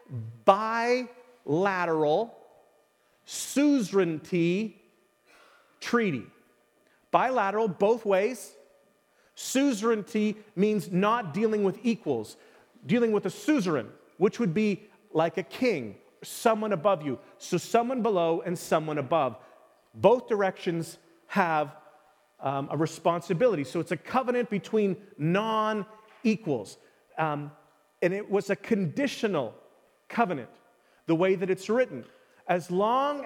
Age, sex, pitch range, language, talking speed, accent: 40-59, male, 170-230 Hz, English, 100 wpm, American